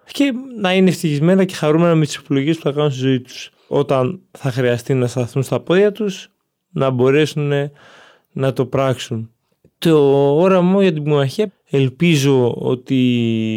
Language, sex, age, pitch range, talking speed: Greek, male, 20-39, 125-150 Hz, 155 wpm